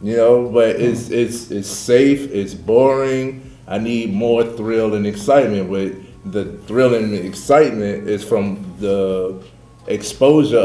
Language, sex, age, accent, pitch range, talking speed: English, male, 30-49, American, 100-115 Hz, 140 wpm